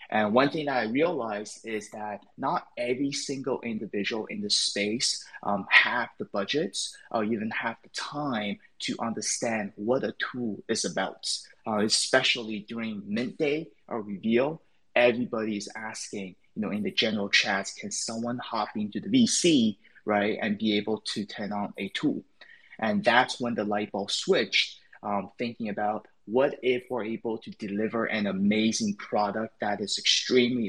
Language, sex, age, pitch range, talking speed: English, male, 20-39, 105-130 Hz, 165 wpm